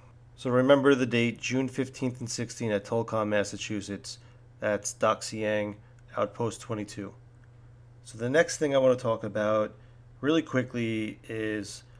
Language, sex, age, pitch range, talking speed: English, male, 30-49, 110-120 Hz, 135 wpm